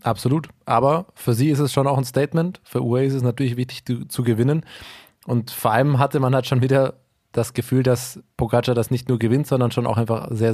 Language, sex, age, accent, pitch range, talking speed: German, male, 20-39, German, 120-135 Hz, 230 wpm